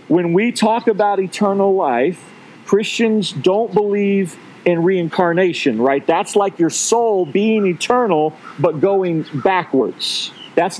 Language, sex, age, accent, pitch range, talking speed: English, male, 40-59, American, 175-220 Hz, 120 wpm